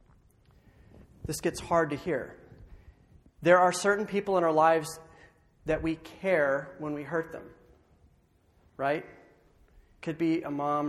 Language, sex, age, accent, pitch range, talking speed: English, male, 40-59, American, 140-170 Hz, 130 wpm